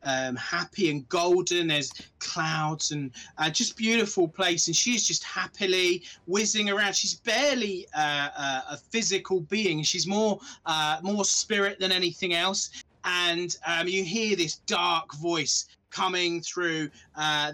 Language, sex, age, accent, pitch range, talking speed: English, male, 20-39, British, 155-190 Hz, 145 wpm